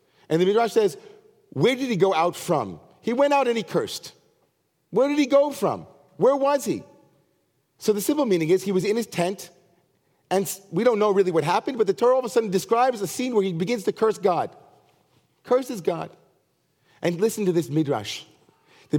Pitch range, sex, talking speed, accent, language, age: 160-215 Hz, male, 210 wpm, American, English, 40-59